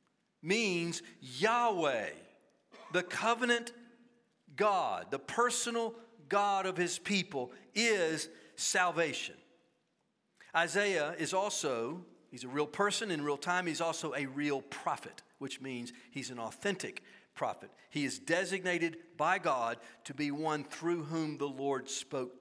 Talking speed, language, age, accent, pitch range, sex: 125 wpm, English, 50-69, American, 165-230 Hz, male